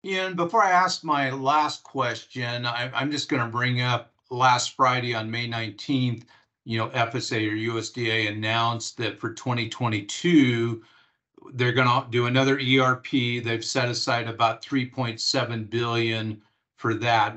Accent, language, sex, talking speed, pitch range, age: American, English, male, 140 wpm, 115-135 Hz, 50-69